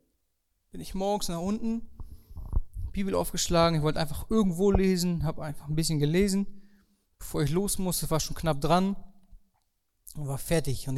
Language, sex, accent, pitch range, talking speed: German, male, German, 150-195 Hz, 155 wpm